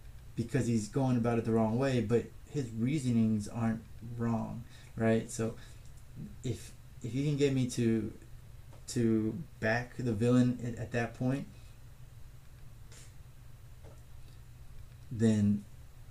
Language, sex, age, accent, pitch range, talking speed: English, male, 20-39, American, 110-120 Hz, 115 wpm